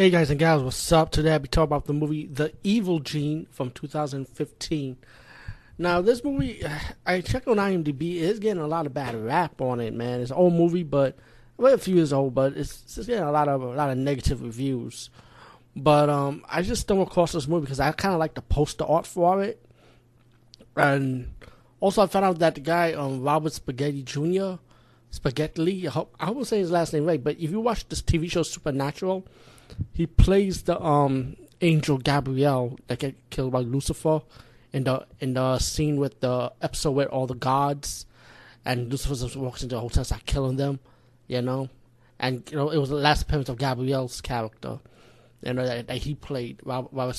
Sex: male